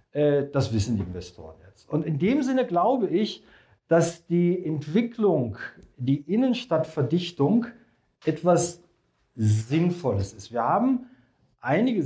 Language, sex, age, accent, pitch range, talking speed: German, male, 40-59, German, 130-180 Hz, 110 wpm